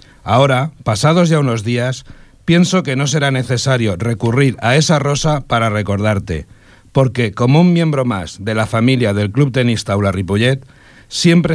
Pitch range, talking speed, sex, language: 110-140 Hz, 155 wpm, male, French